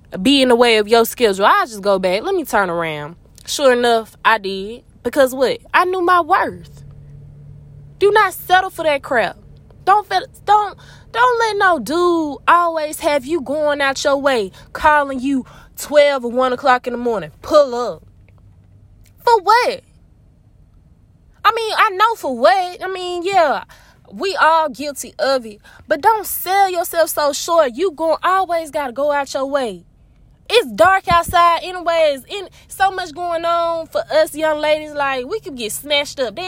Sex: female